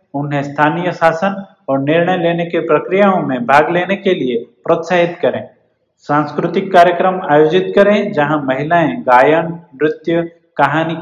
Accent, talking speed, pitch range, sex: native, 130 wpm, 155-190 Hz, male